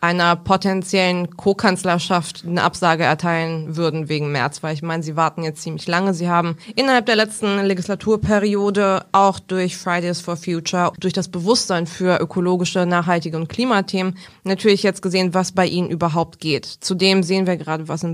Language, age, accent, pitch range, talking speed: German, 20-39, German, 175-205 Hz, 165 wpm